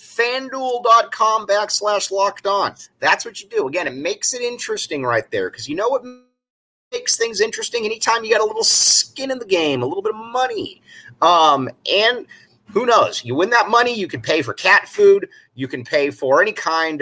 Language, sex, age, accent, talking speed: English, male, 30-49, American, 195 wpm